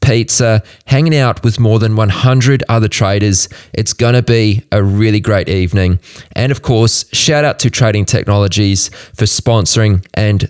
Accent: Australian